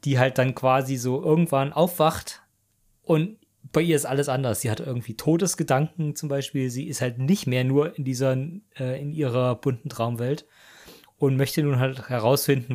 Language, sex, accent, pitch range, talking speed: German, male, German, 120-150 Hz, 175 wpm